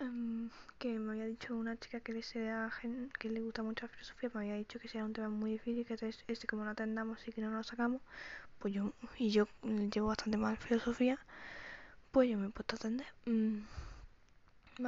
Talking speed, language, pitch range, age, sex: 220 wpm, Spanish, 230-255 Hz, 10-29, female